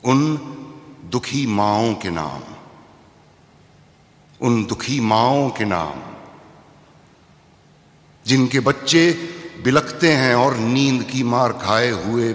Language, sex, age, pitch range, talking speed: Hindi, male, 60-79, 110-140 Hz, 95 wpm